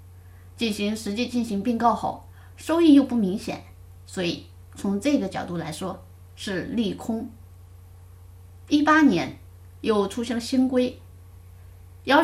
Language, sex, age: Chinese, female, 20-39